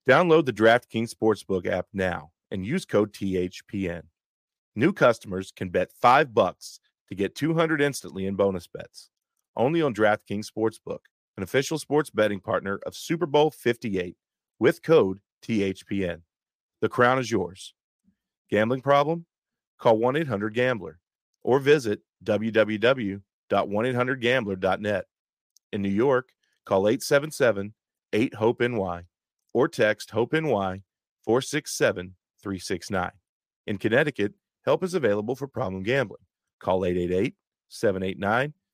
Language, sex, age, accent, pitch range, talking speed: English, male, 40-59, American, 95-135 Hz, 110 wpm